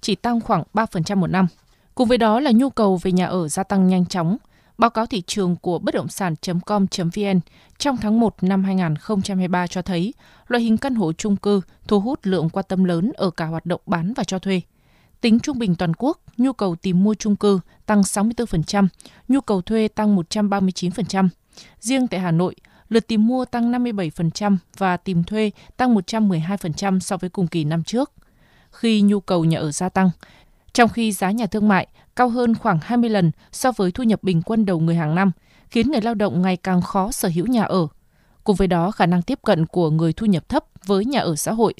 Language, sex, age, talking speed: Vietnamese, female, 20-39, 210 wpm